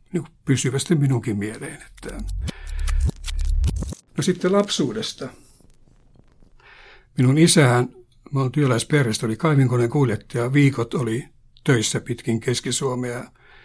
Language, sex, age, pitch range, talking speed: Finnish, male, 60-79, 120-140 Hz, 85 wpm